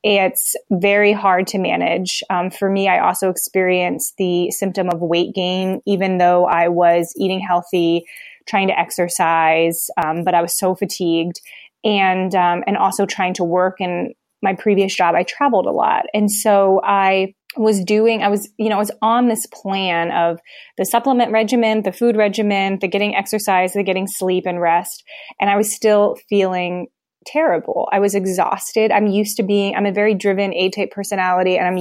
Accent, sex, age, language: American, female, 20-39, English